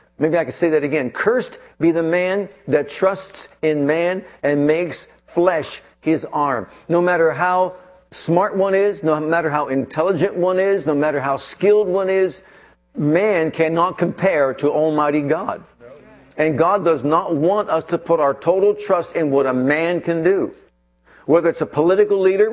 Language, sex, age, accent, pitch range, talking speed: English, male, 50-69, American, 145-180 Hz, 175 wpm